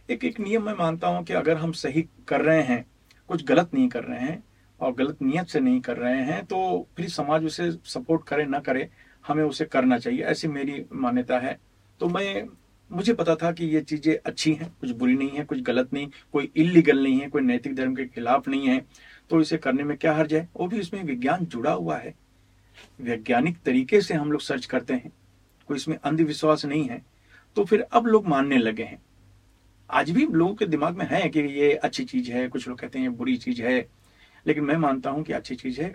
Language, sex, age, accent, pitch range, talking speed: Hindi, male, 50-69, native, 130-170 Hz, 220 wpm